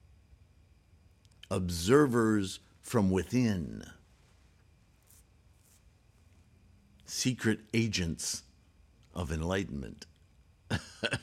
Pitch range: 85-120 Hz